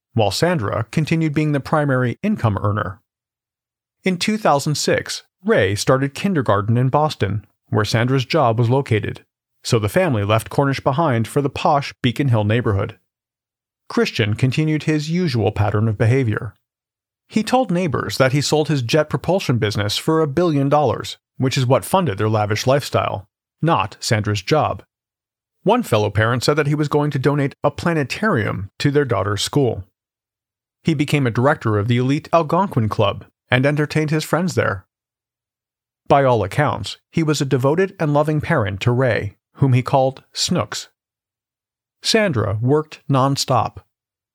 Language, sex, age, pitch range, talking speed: English, male, 40-59, 110-145 Hz, 150 wpm